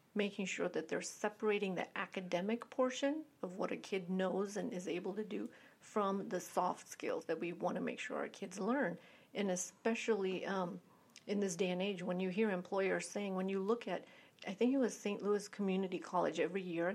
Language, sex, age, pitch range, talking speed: English, female, 40-59, 180-215 Hz, 205 wpm